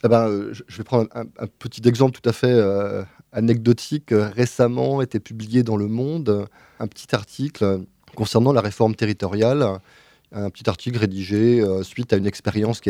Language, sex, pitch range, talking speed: French, male, 100-125 Hz, 170 wpm